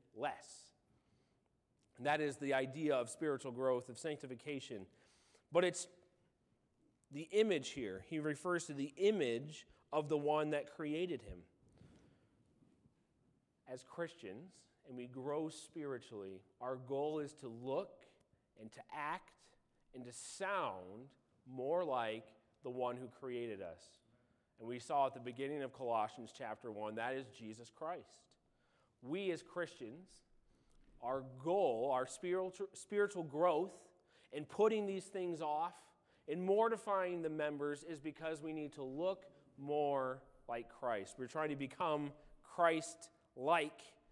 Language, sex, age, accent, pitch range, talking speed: English, male, 30-49, American, 130-170 Hz, 130 wpm